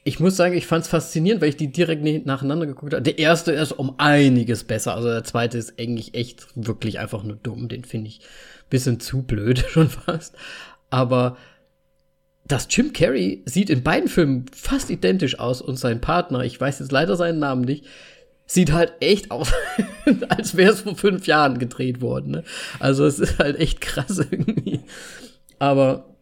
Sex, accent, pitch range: male, German, 120-165 Hz